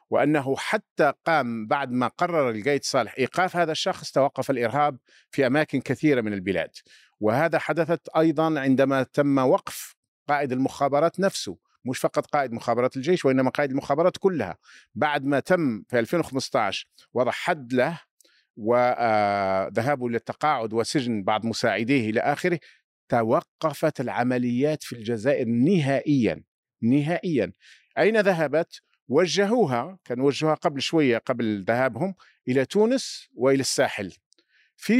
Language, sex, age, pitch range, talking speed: Arabic, male, 50-69, 125-160 Hz, 120 wpm